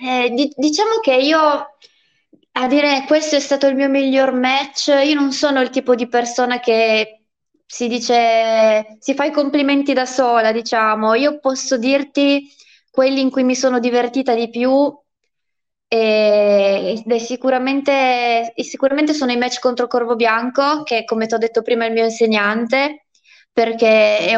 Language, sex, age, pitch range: Italian, female, 20-39, 230-280 Hz